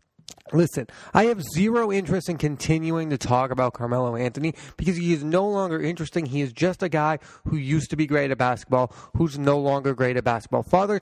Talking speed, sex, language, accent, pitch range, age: 200 wpm, male, English, American, 135-175 Hz, 30-49